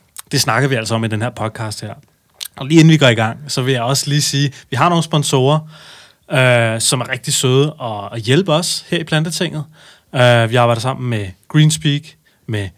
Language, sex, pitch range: Danish, male, 115-155 Hz